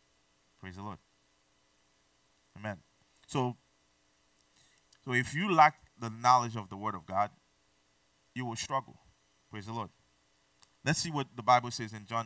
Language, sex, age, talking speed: English, male, 20-39, 145 wpm